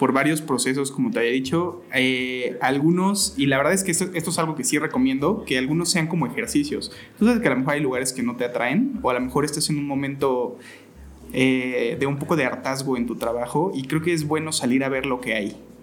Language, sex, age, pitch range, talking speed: Spanish, male, 20-39, 130-160 Hz, 245 wpm